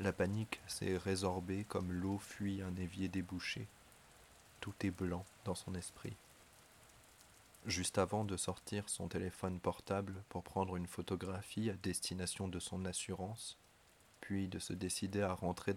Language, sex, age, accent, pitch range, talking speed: French, male, 30-49, French, 90-105 Hz, 145 wpm